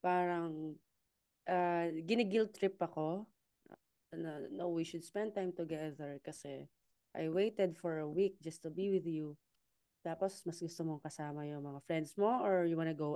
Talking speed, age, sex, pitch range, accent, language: 170 wpm, 20-39, female, 160-215 Hz, native, Filipino